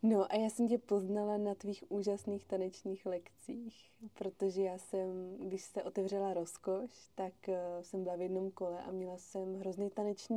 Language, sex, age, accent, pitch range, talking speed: Czech, female, 20-39, native, 185-215 Hz, 170 wpm